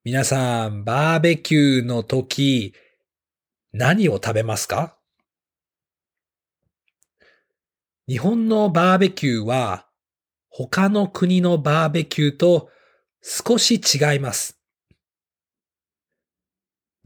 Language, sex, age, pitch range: Japanese, male, 40-59, 120-180 Hz